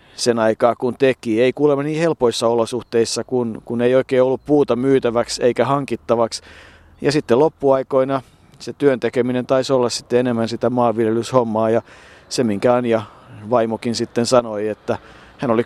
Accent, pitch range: native, 110-130 Hz